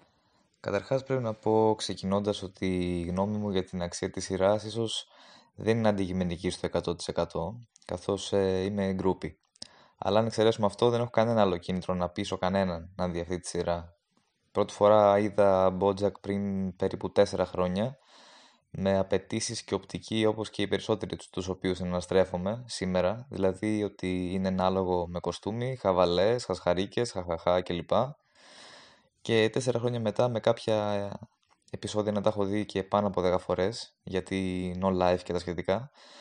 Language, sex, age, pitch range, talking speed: Greek, male, 20-39, 90-105 Hz, 150 wpm